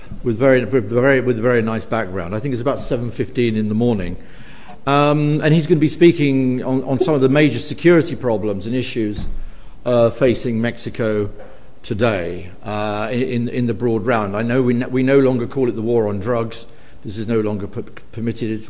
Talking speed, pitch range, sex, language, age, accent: 205 wpm, 110-130 Hz, male, English, 50-69, British